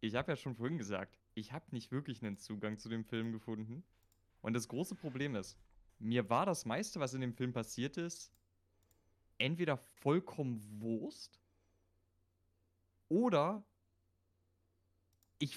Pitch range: 90-155 Hz